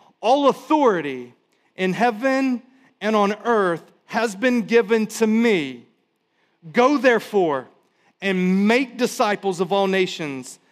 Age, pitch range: 40-59, 140-205 Hz